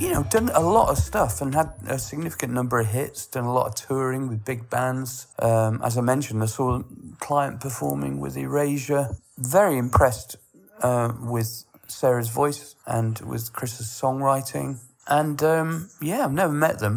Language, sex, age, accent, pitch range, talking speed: English, male, 40-59, British, 115-140 Hz, 175 wpm